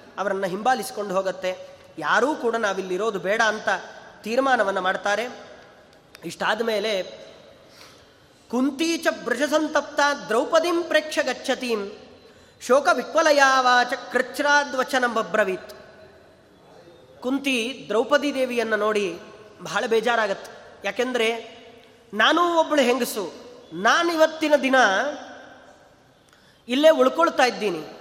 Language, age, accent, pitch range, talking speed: Kannada, 30-49, native, 225-300 Hz, 75 wpm